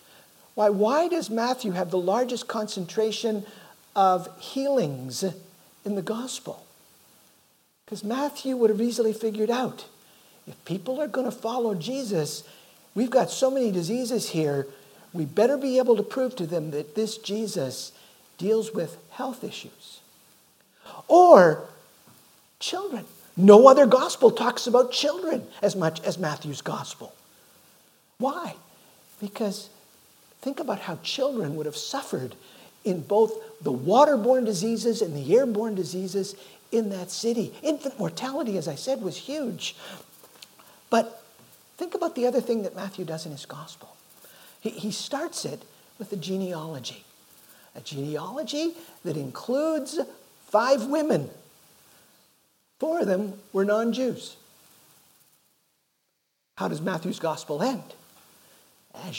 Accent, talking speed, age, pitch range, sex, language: American, 125 wpm, 50-69, 185-255 Hz, male, English